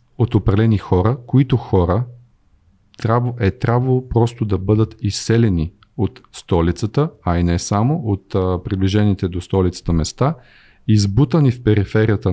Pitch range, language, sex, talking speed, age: 100-120 Hz, Bulgarian, male, 120 wpm, 40-59